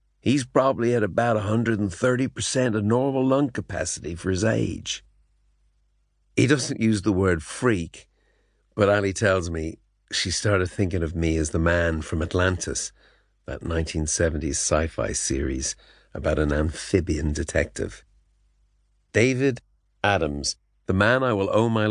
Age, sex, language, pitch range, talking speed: 50-69, male, English, 80-105 Hz, 130 wpm